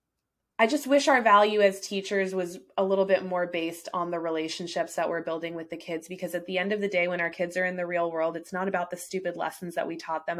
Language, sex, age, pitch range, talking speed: English, female, 20-39, 175-200 Hz, 270 wpm